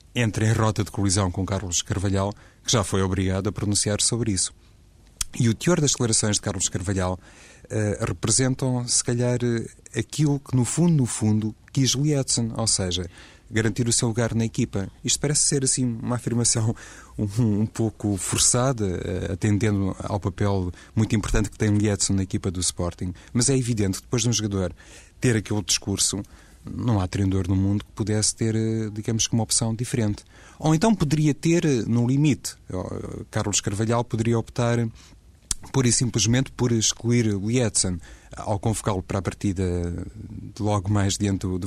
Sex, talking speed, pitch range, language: male, 170 wpm, 95-115 Hz, Portuguese